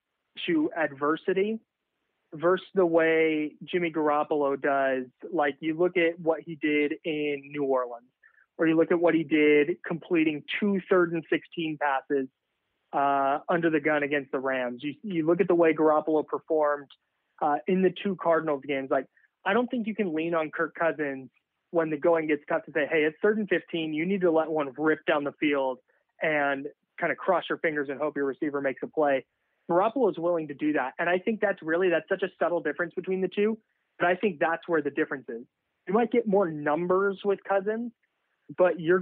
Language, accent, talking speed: English, American, 205 wpm